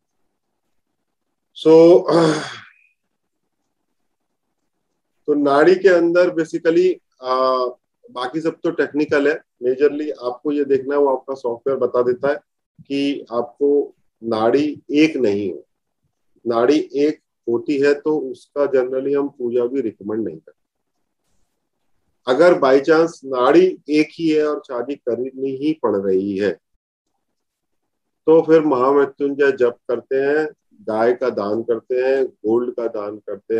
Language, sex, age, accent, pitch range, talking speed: Hindi, male, 40-59, native, 120-160 Hz, 125 wpm